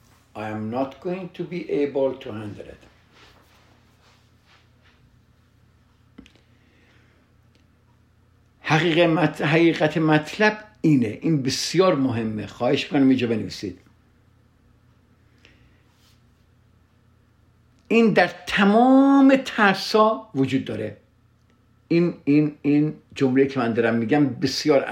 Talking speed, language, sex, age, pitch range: 85 wpm, Persian, male, 60-79, 115-145 Hz